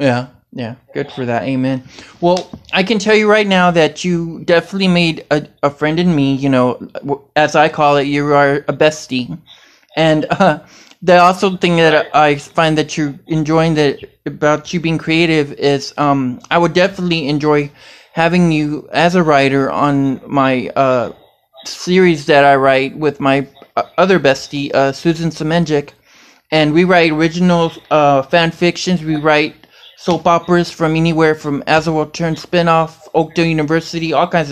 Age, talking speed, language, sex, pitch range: 20-39, 165 wpm, English, male, 145-175 Hz